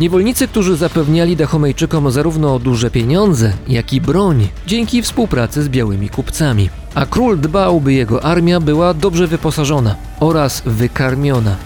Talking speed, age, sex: 135 wpm, 40-59, male